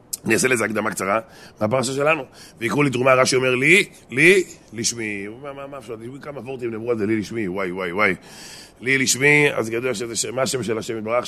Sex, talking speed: male, 195 wpm